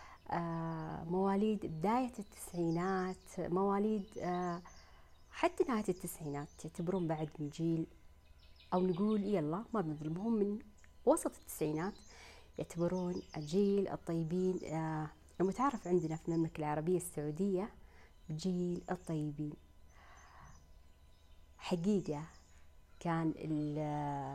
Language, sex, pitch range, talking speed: Arabic, female, 150-195 Hz, 85 wpm